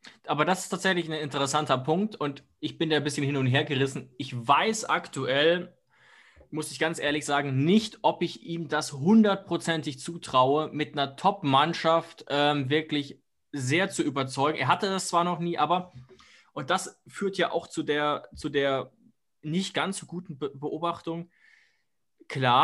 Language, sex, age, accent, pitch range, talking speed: German, male, 20-39, German, 130-170 Hz, 165 wpm